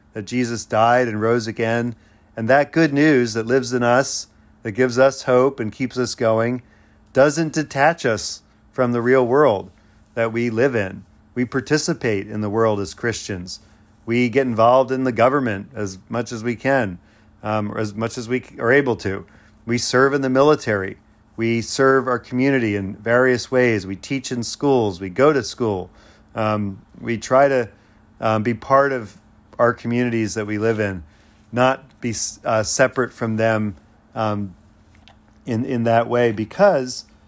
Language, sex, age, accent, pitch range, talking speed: English, male, 40-59, American, 105-130 Hz, 170 wpm